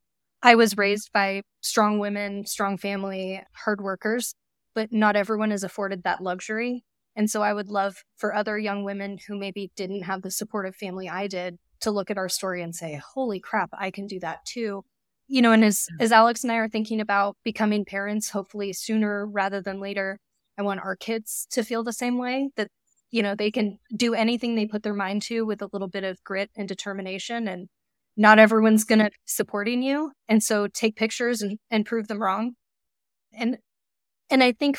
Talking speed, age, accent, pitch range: 200 wpm, 20-39, American, 195-225 Hz